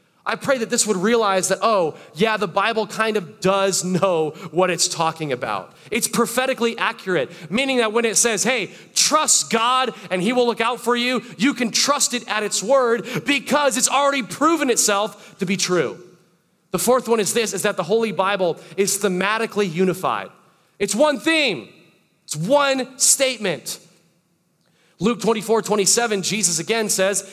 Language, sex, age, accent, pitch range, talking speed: English, male, 30-49, American, 185-245 Hz, 175 wpm